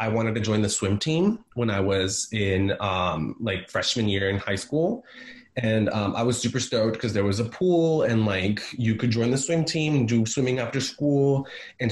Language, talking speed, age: English, 215 wpm, 20-39